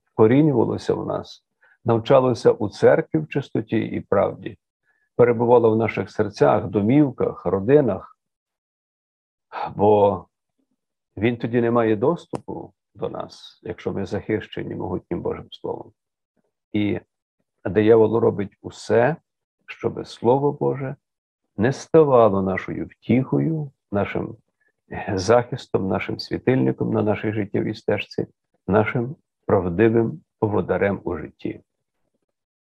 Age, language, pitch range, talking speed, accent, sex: 50-69, Ukrainian, 105-140 Hz, 100 wpm, native, male